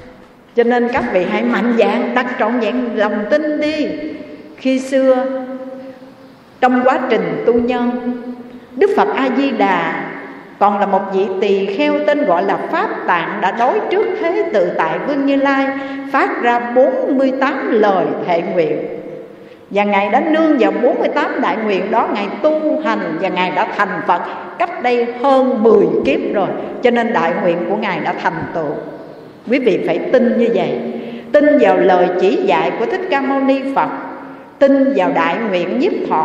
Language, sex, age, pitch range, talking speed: Vietnamese, female, 60-79, 220-285 Hz, 170 wpm